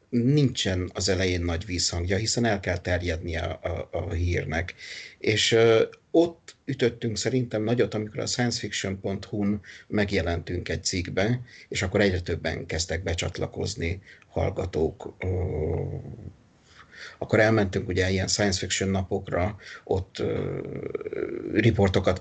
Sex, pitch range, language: male, 90-110 Hz, Hungarian